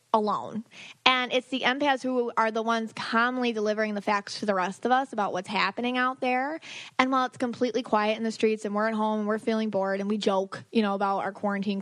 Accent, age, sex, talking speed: American, 20-39, female, 240 wpm